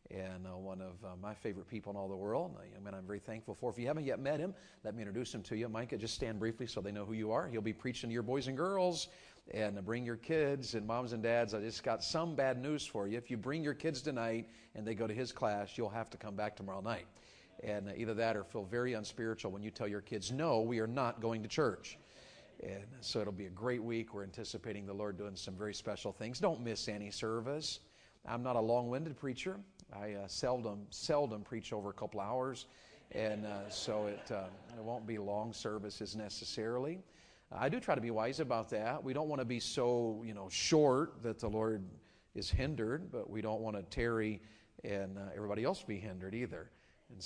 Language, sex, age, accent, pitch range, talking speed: English, male, 40-59, American, 105-125 Hz, 230 wpm